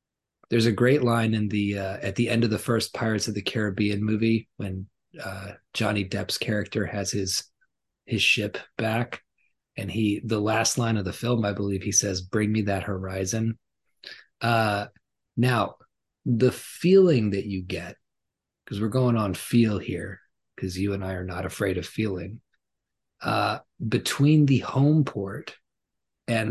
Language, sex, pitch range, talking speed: English, male, 100-120 Hz, 165 wpm